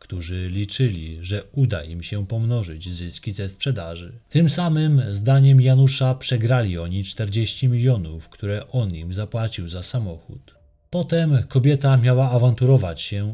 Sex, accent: male, native